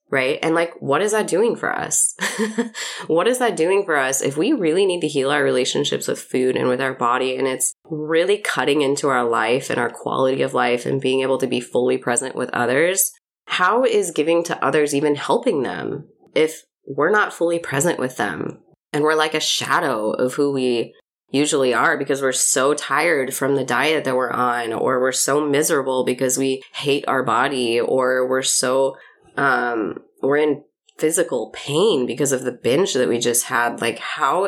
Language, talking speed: English, 195 wpm